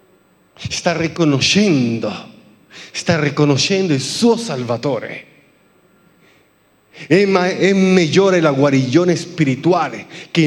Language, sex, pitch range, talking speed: Italian, male, 170-245 Hz, 75 wpm